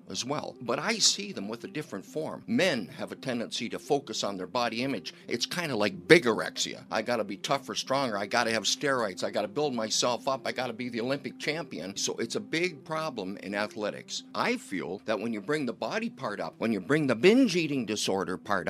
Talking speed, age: 225 wpm, 50-69